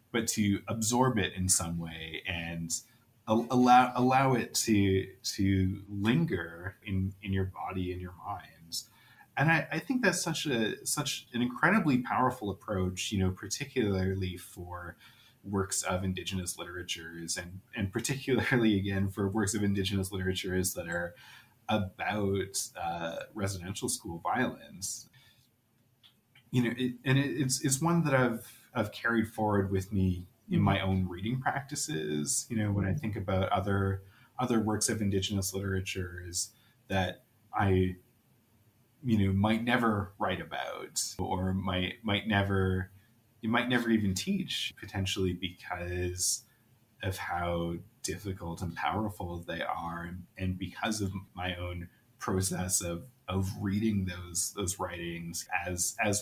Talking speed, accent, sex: 140 wpm, American, male